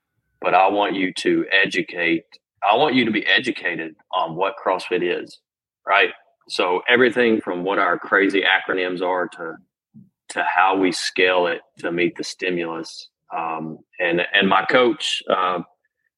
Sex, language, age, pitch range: male, English, 30-49, 85-115 Hz